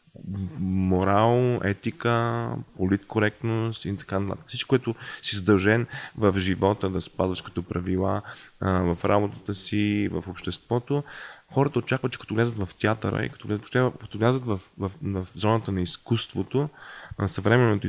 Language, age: Bulgarian, 20-39